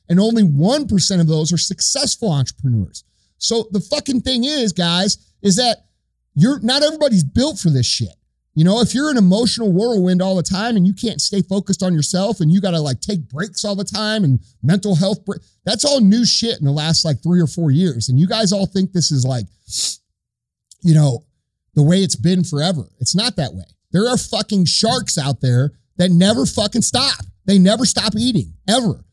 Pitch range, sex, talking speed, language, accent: 155-215 Hz, male, 205 wpm, English, American